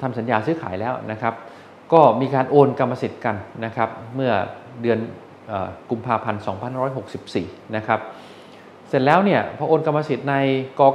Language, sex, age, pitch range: Thai, male, 20-39, 110-145 Hz